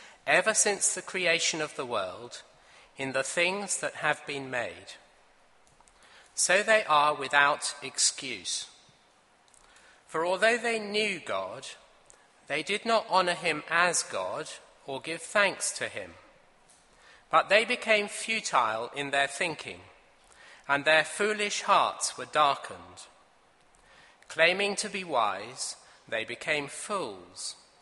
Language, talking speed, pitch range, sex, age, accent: English, 120 wpm, 135-195 Hz, male, 40-59, British